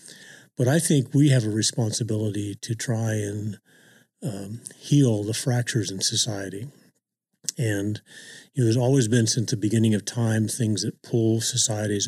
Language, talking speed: English, 155 wpm